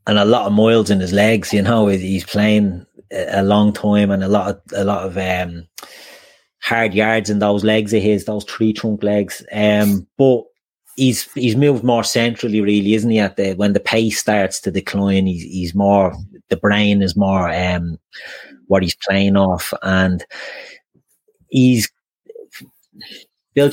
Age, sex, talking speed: 30-49, male, 170 wpm